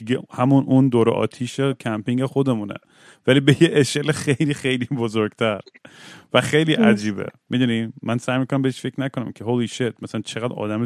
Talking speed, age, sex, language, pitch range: 155 wpm, 30-49, male, Persian, 110-135 Hz